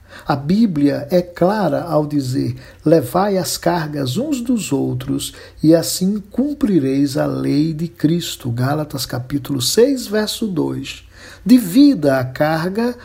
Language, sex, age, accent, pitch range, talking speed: Portuguese, male, 60-79, Brazilian, 135-195 Hz, 125 wpm